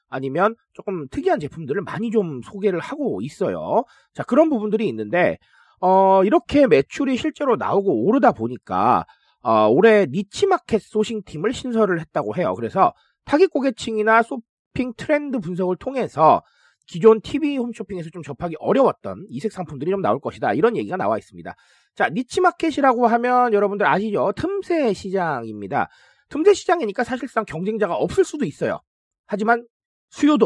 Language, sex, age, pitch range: Korean, male, 30-49, 180-275 Hz